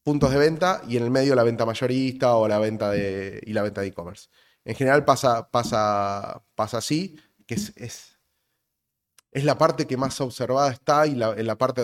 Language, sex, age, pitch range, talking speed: Spanish, male, 20-39, 115-145 Hz, 205 wpm